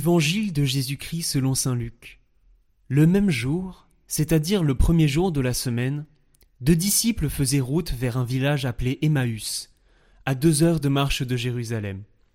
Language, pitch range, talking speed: French, 120-160 Hz, 155 wpm